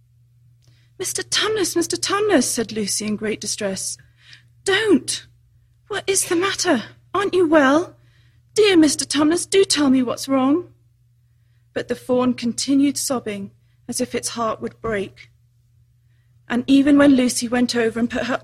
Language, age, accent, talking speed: English, 30-49, British, 145 wpm